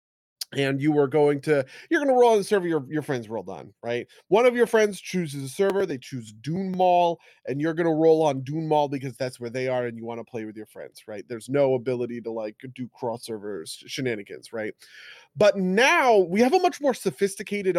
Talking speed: 235 wpm